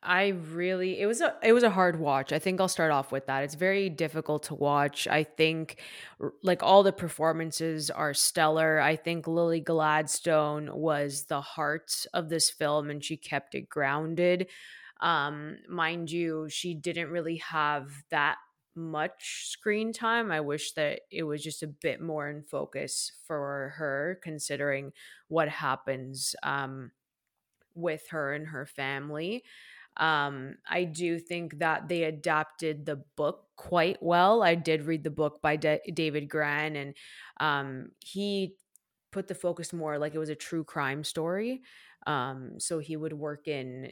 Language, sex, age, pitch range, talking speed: English, female, 20-39, 140-170 Hz, 160 wpm